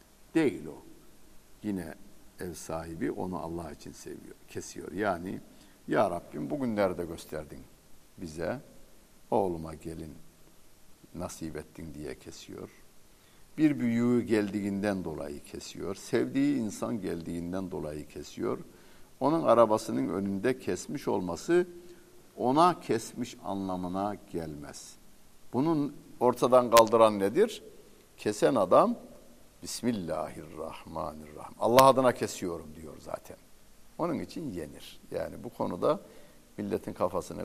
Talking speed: 100 wpm